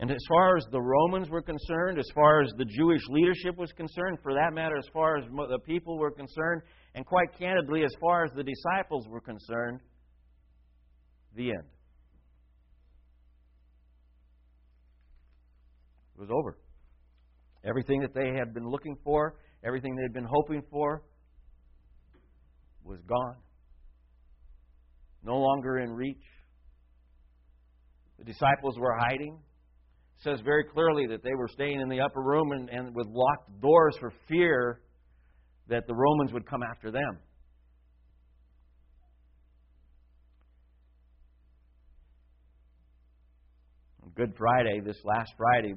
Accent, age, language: American, 60-79, English